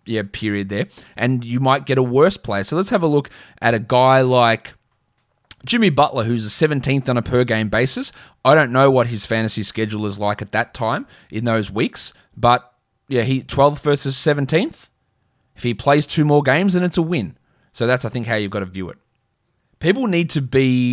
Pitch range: 115-145 Hz